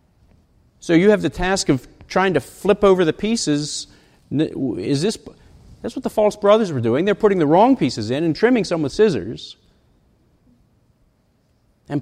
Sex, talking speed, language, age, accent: male, 165 wpm, English, 50-69, American